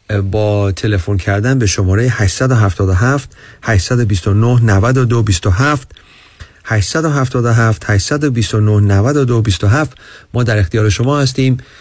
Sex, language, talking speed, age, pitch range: male, Persian, 80 wpm, 40-59, 100-130 Hz